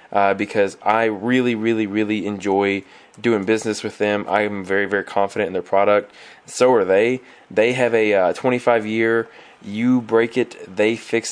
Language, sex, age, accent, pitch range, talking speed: English, male, 20-39, American, 100-120 Hz, 170 wpm